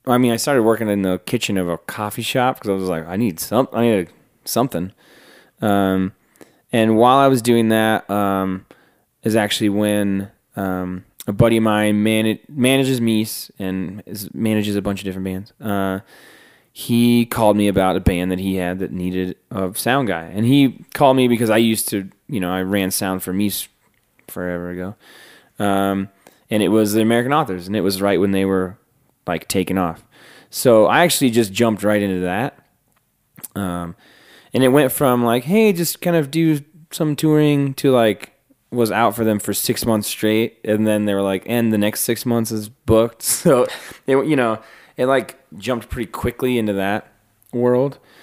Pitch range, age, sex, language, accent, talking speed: 95-120 Hz, 20-39, male, English, American, 190 wpm